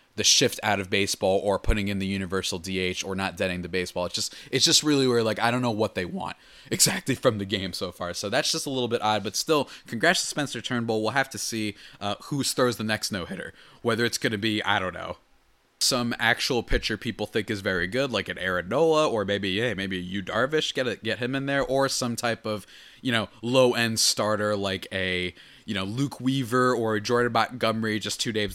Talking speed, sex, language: 225 wpm, male, English